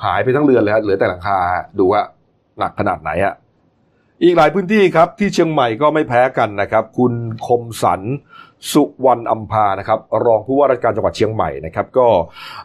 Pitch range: 115-150 Hz